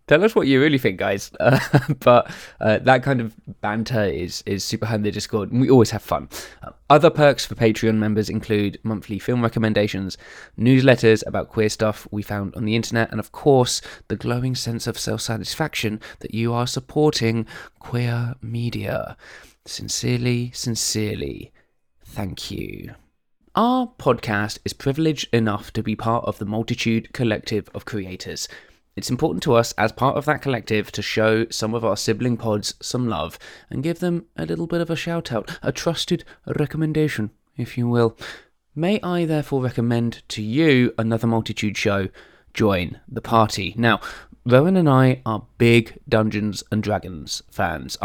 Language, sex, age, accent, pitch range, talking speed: English, male, 20-39, British, 110-130 Hz, 165 wpm